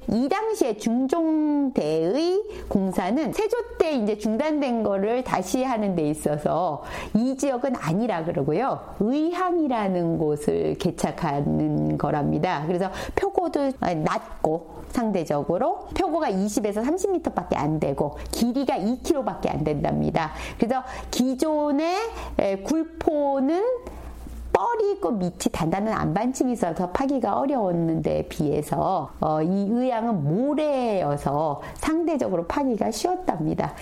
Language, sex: Korean, female